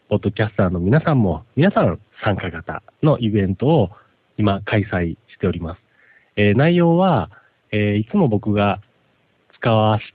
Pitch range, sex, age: 100-140 Hz, male, 40-59